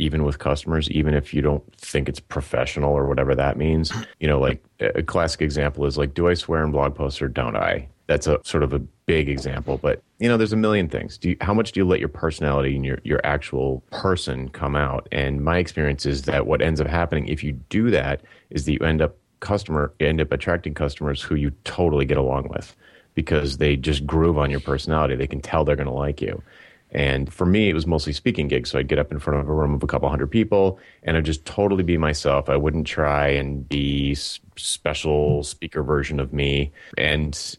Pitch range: 70-85 Hz